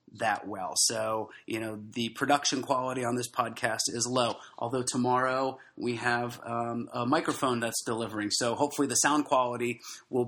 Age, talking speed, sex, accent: 30-49, 165 wpm, male, American